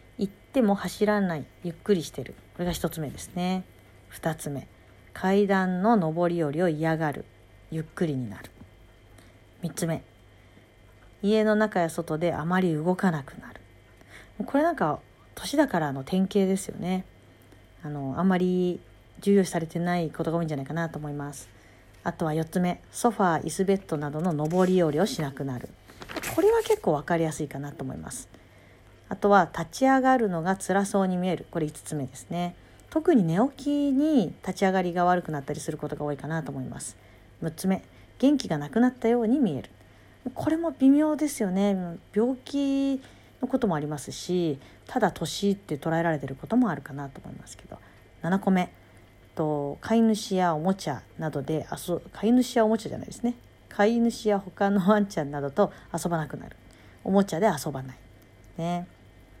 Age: 40-59